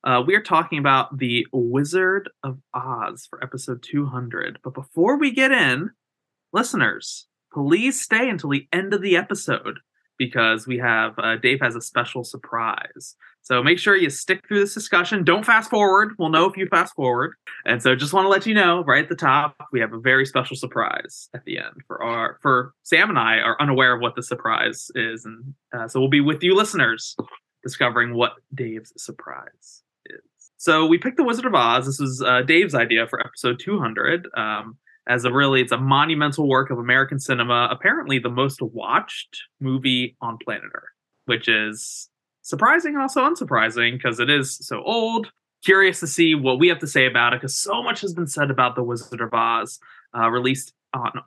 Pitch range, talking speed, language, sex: 125-175 Hz, 195 wpm, English, male